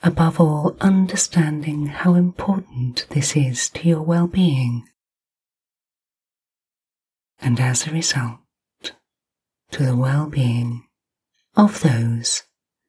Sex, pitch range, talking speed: female, 125-185 Hz, 90 wpm